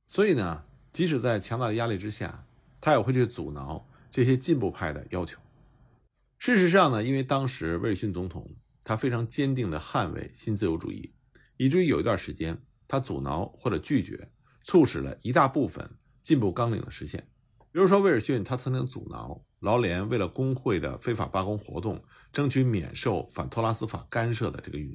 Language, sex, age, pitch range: Chinese, male, 50-69, 105-135 Hz